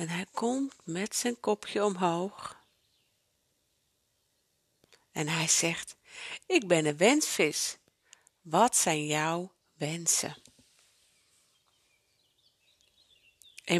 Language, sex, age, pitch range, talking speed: Dutch, female, 50-69, 155-200 Hz, 85 wpm